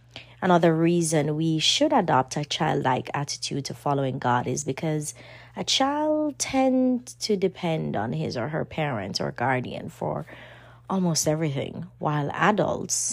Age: 20-39